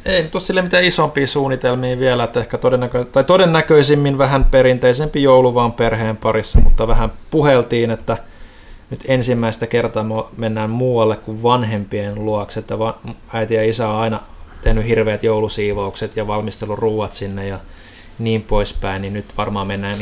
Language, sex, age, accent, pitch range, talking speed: Finnish, male, 20-39, native, 105-120 Hz, 140 wpm